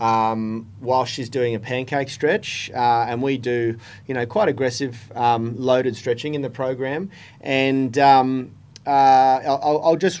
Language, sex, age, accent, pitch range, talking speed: English, male, 30-49, Australian, 120-140 Hz, 160 wpm